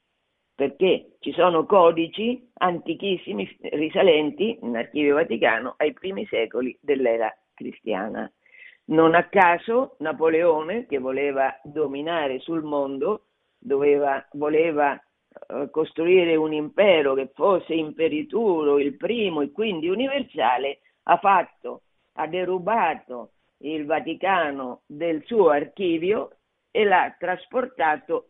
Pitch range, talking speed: 140-180 Hz, 105 wpm